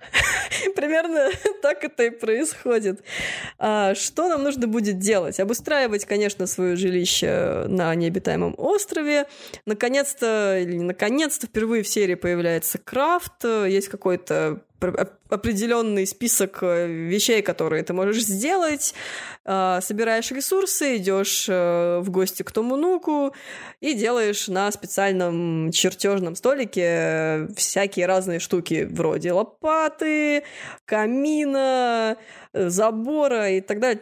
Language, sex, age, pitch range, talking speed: Russian, female, 20-39, 180-245 Hz, 100 wpm